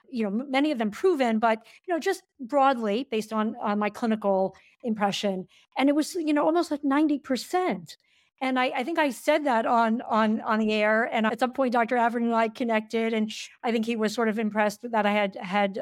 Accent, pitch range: American, 220-270 Hz